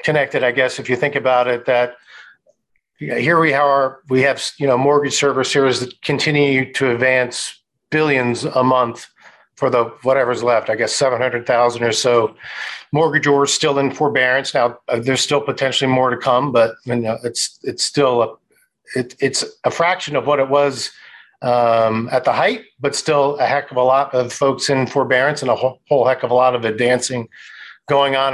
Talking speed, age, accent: 190 wpm, 50-69, American